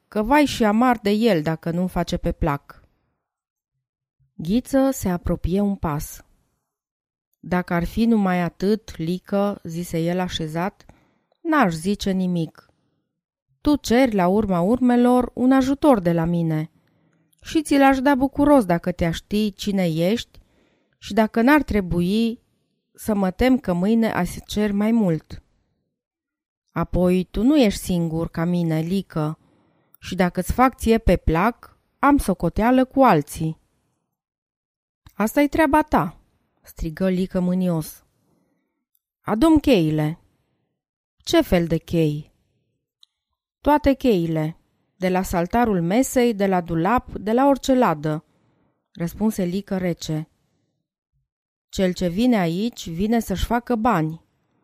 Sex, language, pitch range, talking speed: female, Romanian, 165-240 Hz, 125 wpm